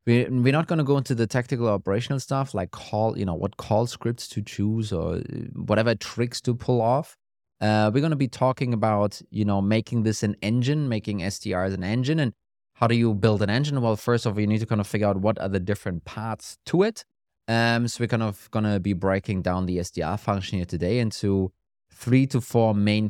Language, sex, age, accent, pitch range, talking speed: English, male, 20-39, German, 100-125 Hz, 230 wpm